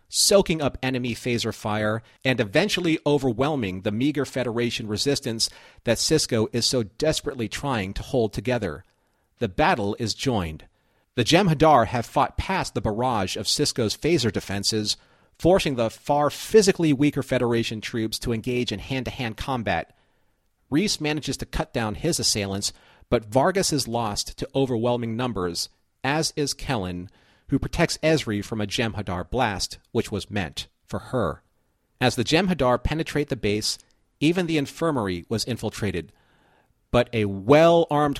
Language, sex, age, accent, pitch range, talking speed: English, male, 40-59, American, 105-135 Hz, 145 wpm